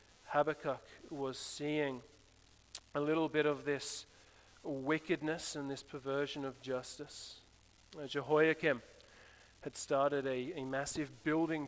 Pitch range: 115-150 Hz